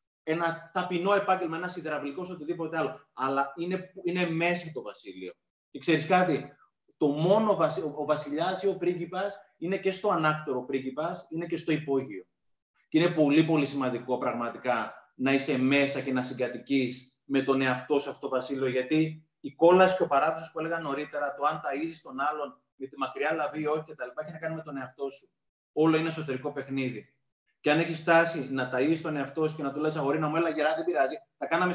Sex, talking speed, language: male, 200 wpm, Greek